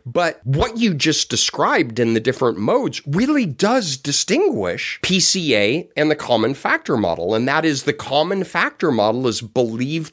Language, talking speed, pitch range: English, 160 wpm, 115-155 Hz